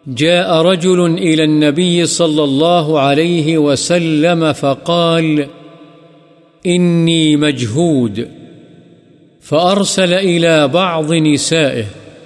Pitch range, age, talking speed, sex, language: 150-175 Hz, 50-69, 75 wpm, male, Urdu